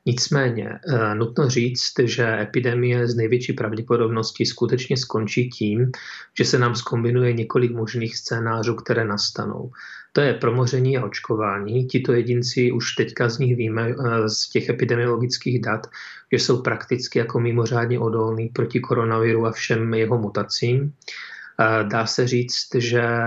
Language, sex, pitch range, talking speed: Czech, male, 110-125 Hz, 130 wpm